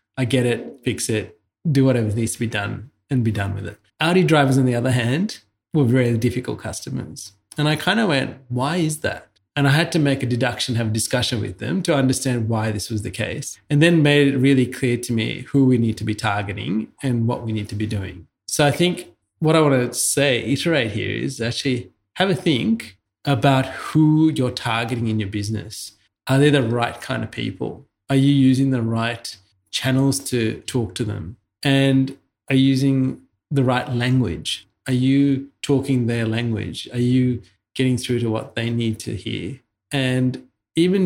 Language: English